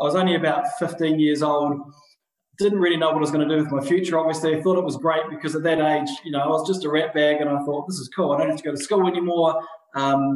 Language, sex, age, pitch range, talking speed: English, male, 20-39, 155-190 Hz, 300 wpm